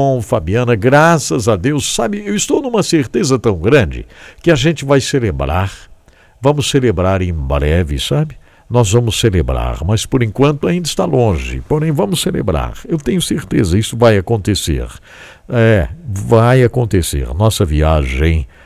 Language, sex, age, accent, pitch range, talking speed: English, male, 60-79, Brazilian, 90-145 Hz, 140 wpm